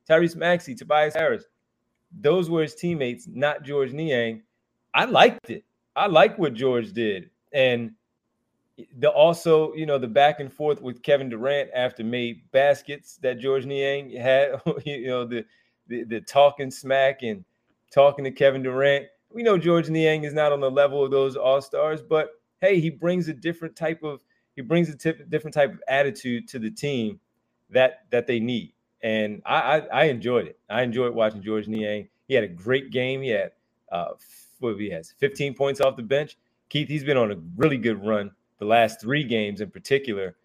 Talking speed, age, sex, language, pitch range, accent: 185 wpm, 30-49, male, English, 115-145 Hz, American